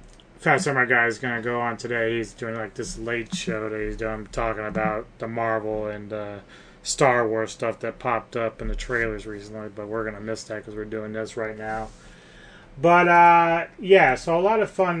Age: 20-39